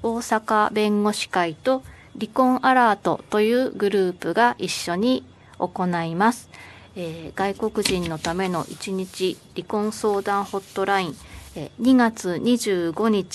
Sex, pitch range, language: female, 180-230 Hz, Japanese